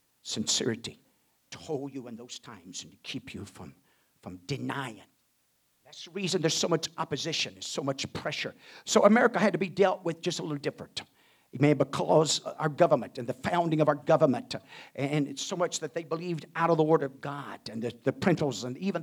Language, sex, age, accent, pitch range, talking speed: English, male, 50-69, American, 135-175 Hz, 210 wpm